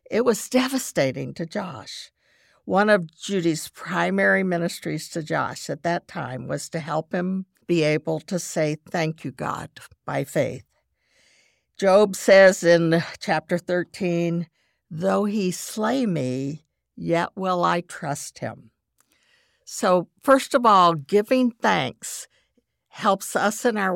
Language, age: English, 60-79